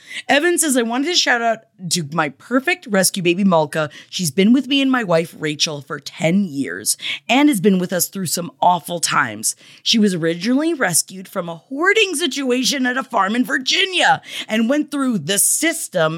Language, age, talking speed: English, 20-39, 190 wpm